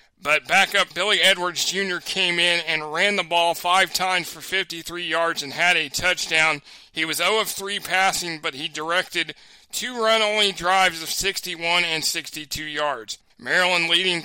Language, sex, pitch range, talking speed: English, male, 160-185 Hz, 170 wpm